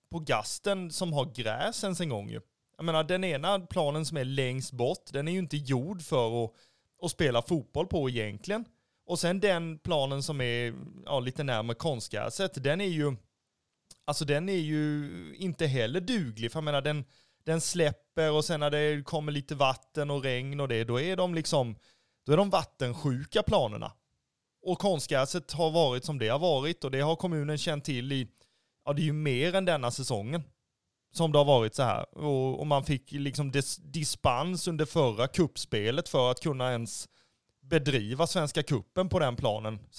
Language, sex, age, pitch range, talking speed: Swedish, male, 30-49, 130-165 Hz, 185 wpm